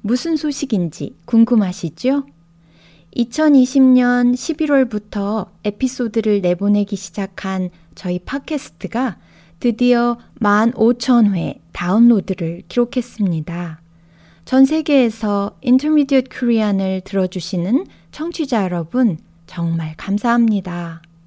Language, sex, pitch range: Korean, female, 175-250 Hz